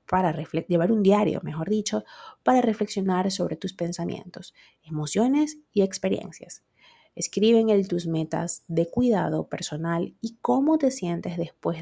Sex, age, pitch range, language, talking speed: female, 30-49, 170-220 Hz, Spanish, 140 wpm